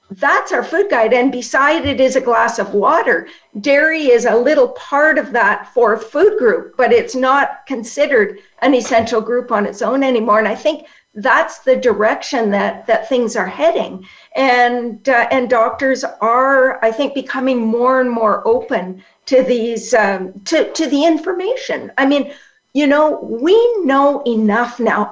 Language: English